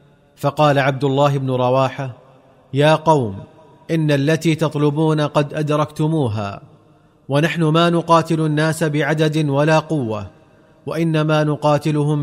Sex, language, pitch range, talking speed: male, Arabic, 140-155 Hz, 105 wpm